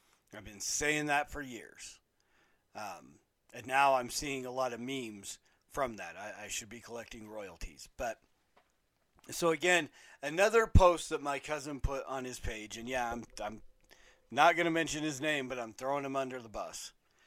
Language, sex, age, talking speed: English, male, 40-59, 180 wpm